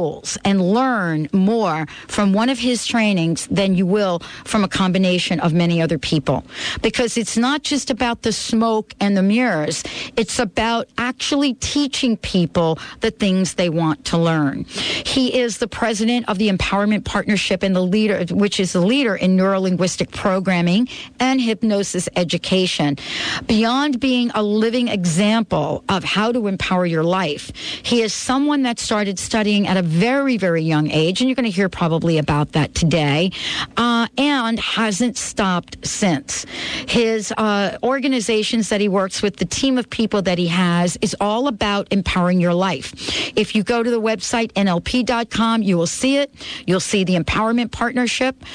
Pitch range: 185-235 Hz